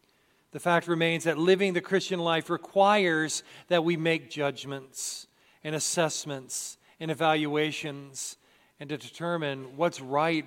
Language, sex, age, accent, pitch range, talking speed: English, male, 40-59, American, 155-195 Hz, 125 wpm